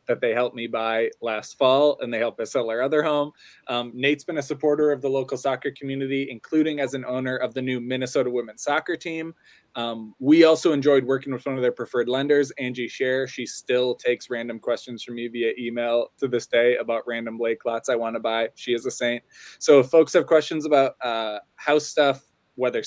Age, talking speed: 20-39, 220 wpm